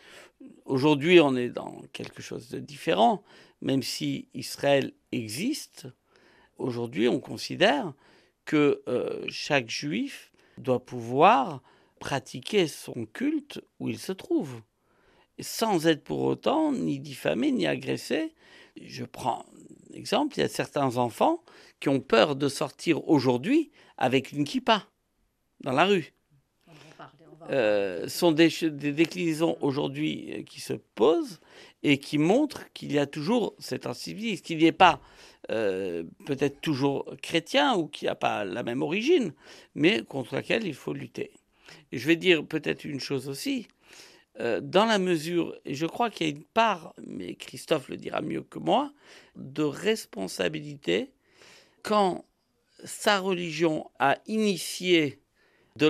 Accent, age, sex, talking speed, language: French, 60-79, male, 140 wpm, French